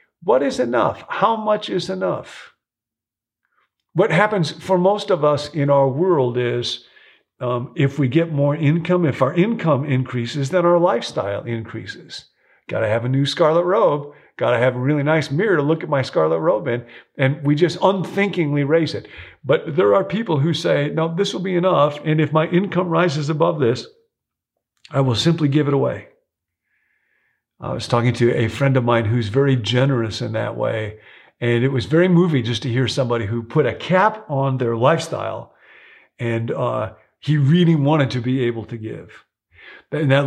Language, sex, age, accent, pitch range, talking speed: English, male, 50-69, American, 120-160 Hz, 185 wpm